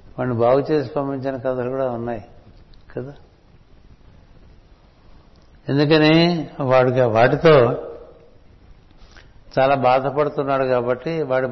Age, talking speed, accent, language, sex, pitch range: 60-79, 80 wpm, native, Telugu, male, 115-145 Hz